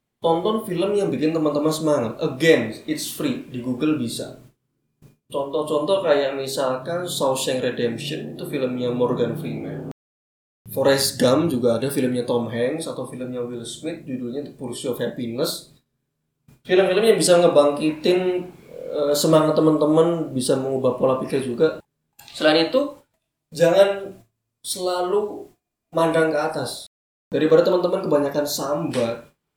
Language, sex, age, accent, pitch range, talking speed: Indonesian, male, 20-39, native, 120-155 Hz, 120 wpm